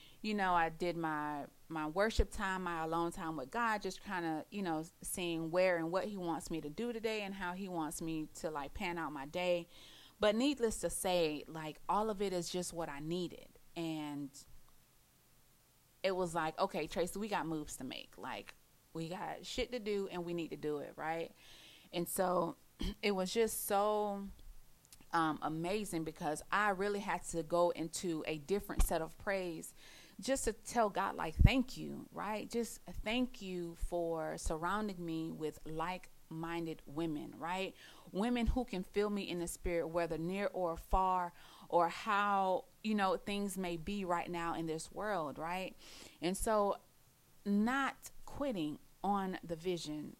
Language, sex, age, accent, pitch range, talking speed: English, female, 30-49, American, 165-200 Hz, 175 wpm